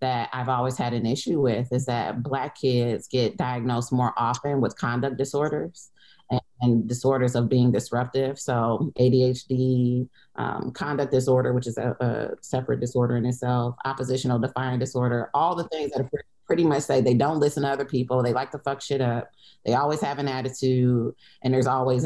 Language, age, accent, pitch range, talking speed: English, 30-49, American, 125-140 Hz, 185 wpm